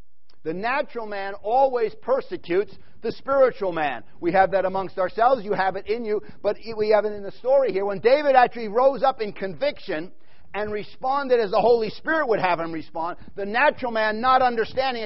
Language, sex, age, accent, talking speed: English, male, 50-69, American, 190 wpm